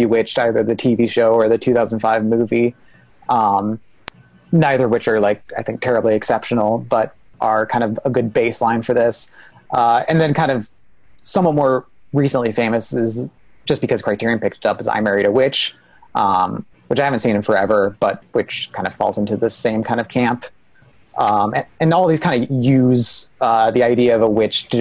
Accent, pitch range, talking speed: American, 115-130 Hz, 195 wpm